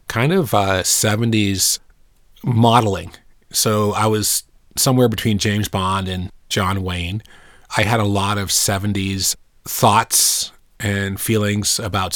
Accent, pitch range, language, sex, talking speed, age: American, 95-110 Hz, English, male, 125 wpm, 30-49